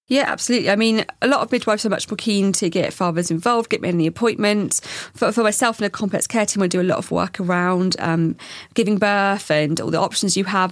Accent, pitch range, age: British, 175-210 Hz, 40-59